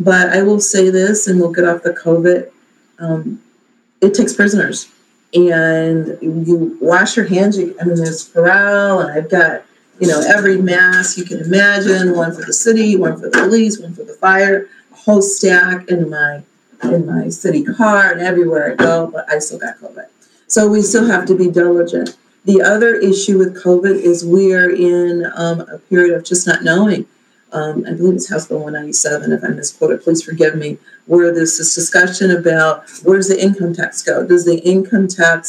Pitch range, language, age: 165-195 Hz, English, 40-59